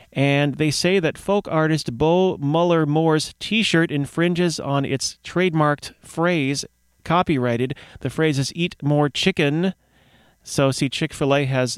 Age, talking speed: 30-49, 130 wpm